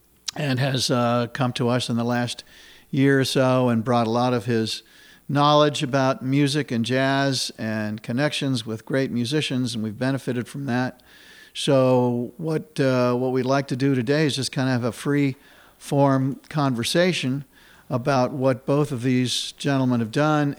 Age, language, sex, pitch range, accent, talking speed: 50-69, English, male, 120-140 Hz, American, 170 wpm